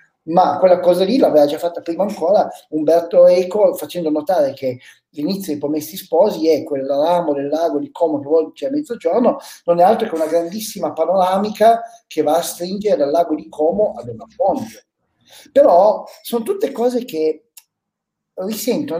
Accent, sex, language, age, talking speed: native, male, Italian, 40-59, 165 wpm